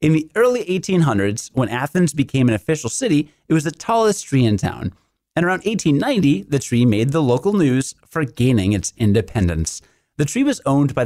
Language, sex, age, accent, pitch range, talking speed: English, male, 30-49, American, 120-180 Hz, 190 wpm